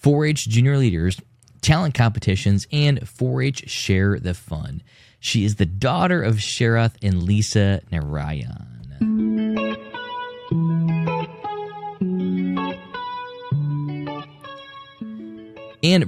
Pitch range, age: 100-135 Hz, 20-39